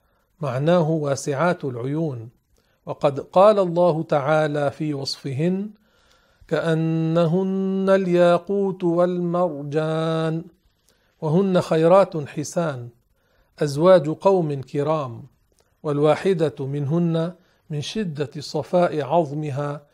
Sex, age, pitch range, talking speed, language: male, 50-69, 145-175 Hz, 70 wpm, Arabic